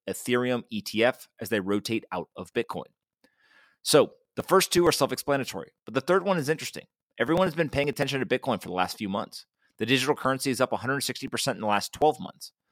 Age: 30-49